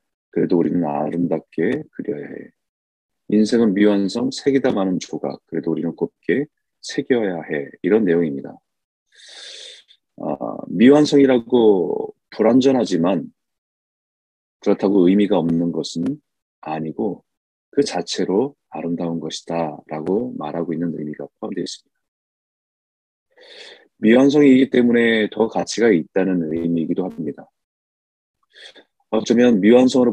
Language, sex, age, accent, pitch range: Korean, male, 30-49, native, 85-125 Hz